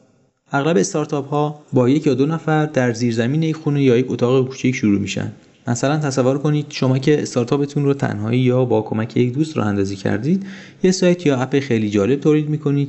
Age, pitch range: 30-49, 110-140 Hz